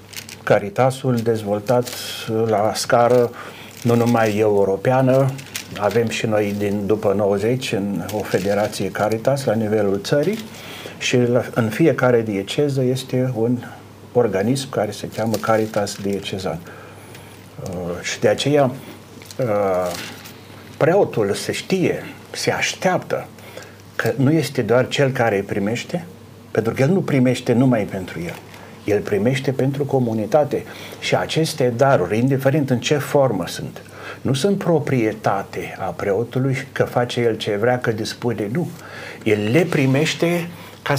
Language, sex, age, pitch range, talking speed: Romanian, male, 50-69, 105-130 Hz, 125 wpm